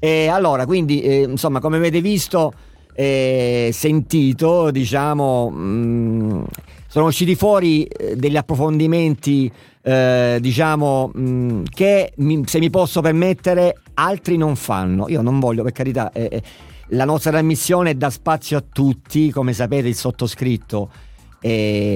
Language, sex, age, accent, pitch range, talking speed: Italian, male, 50-69, native, 120-160 Hz, 130 wpm